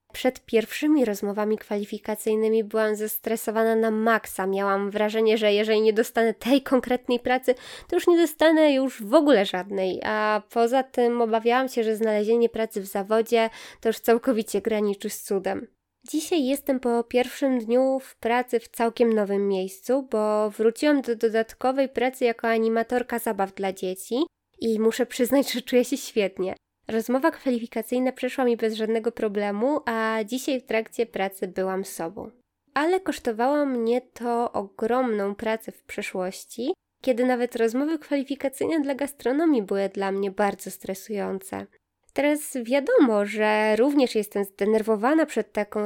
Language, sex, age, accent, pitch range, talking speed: Polish, female, 20-39, native, 215-265 Hz, 145 wpm